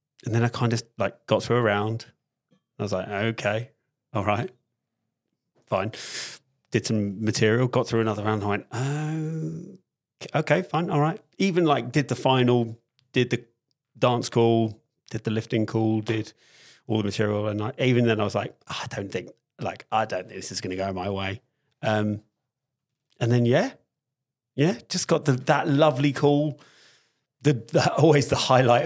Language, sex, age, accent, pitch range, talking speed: English, male, 30-49, British, 105-135 Hz, 180 wpm